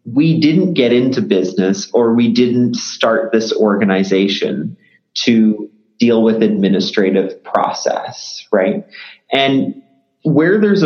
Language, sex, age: English, male, 30-49